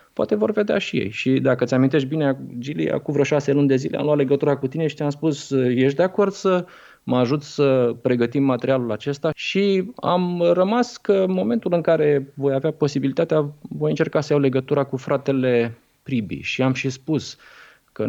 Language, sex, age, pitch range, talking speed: Romanian, male, 20-39, 120-150 Hz, 195 wpm